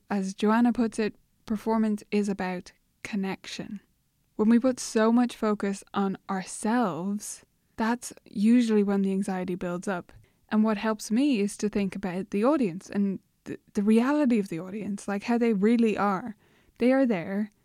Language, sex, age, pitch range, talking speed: English, female, 10-29, 200-240 Hz, 160 wpm